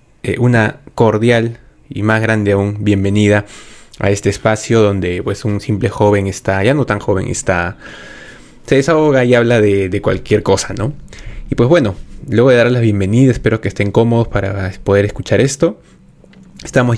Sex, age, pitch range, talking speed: male, 20-39, 100-120 Hz, 165 wpm